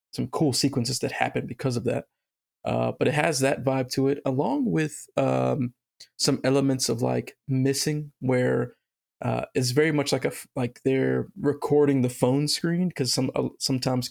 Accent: American